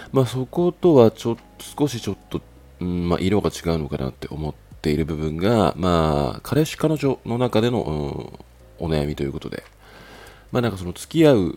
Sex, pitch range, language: male, 80-110 Hz, Japanese